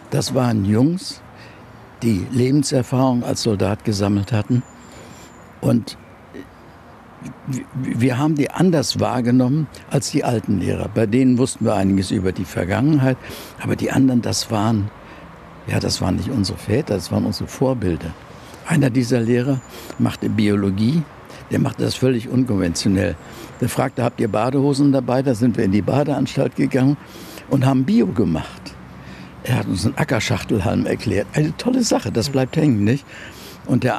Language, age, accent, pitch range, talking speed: German, 60-79, German, 100-130 Hz, 145 wpm